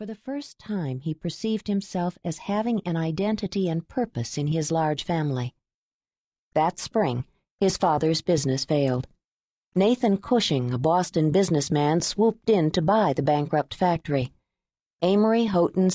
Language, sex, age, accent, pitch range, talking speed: English, female, 50-69, American, 155-215 Hz, 140 wpm